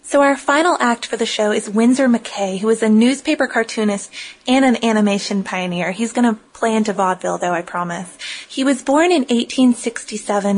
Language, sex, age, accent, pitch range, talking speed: English, female, 20-39, American, 200-245 Hz, 180 wpm